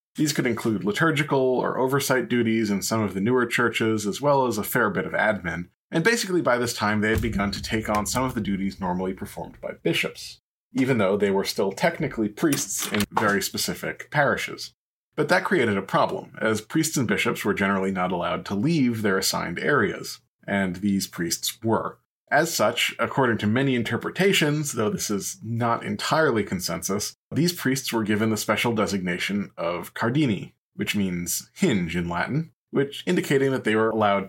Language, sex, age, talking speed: English, male, 30-49, 185 wpm